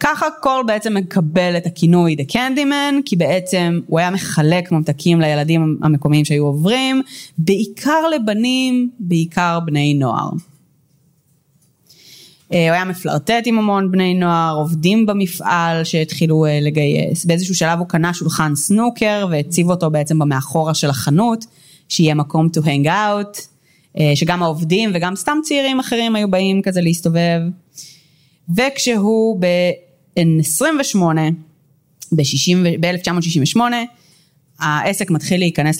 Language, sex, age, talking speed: Hebrew, female, 20-39, 115 wpm